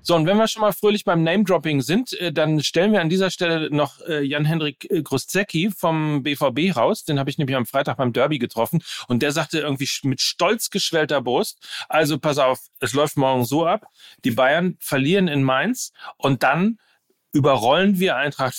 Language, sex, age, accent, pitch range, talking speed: German, male, 40-59, German, 125-165 Hz, 185 wpm